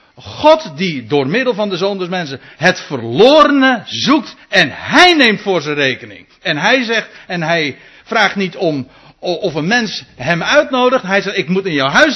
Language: Dutch